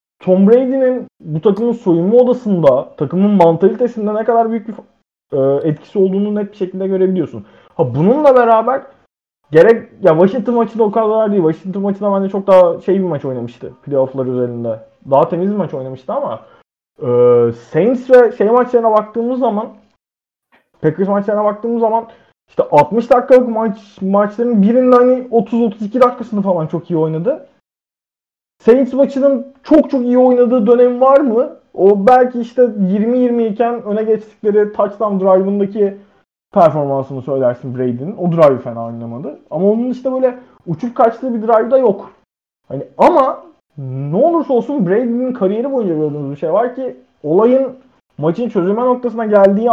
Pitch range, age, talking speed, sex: 170-245 Hz, 30-49, 145 wpm, male